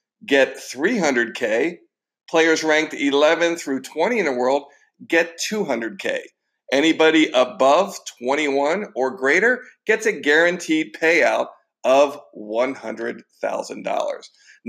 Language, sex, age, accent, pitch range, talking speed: English, male, 50-69, American, 135-195 Hz, 95 wpm